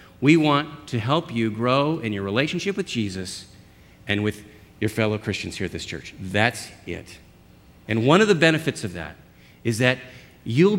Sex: male